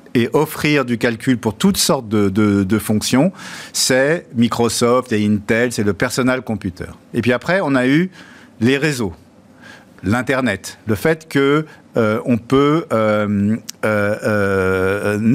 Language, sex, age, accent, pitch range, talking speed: French, male, 50-69, French, 110-150 Hz, 135 wpm